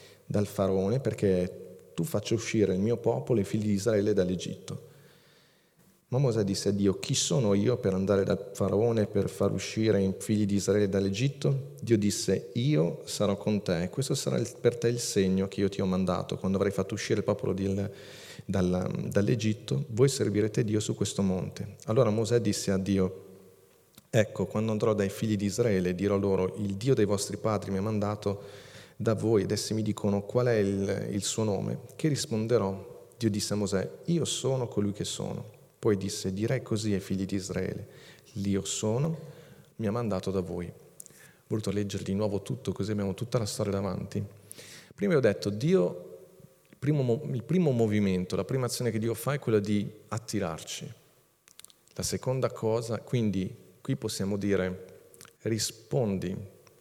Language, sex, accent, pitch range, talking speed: Italian, male, native, 100-115 Hz, 175 wpm